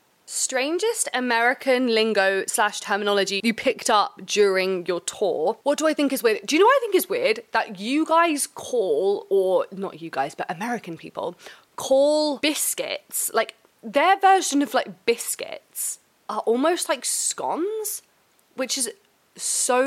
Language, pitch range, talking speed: English, 200-290 Hz, 155 wpm